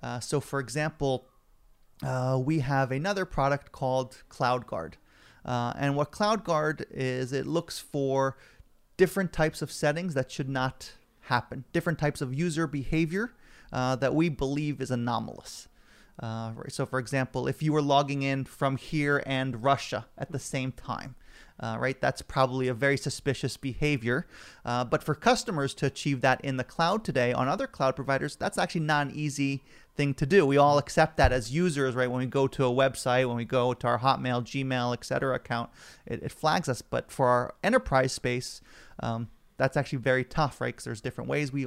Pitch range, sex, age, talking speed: 130-155 Hz, male, 30-49, 185 wpm